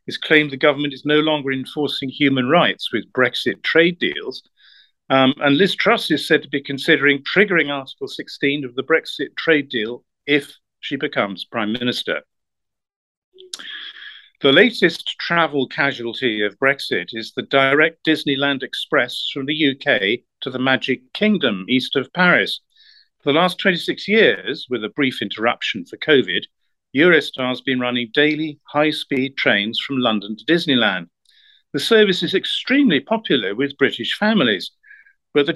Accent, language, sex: British, English, male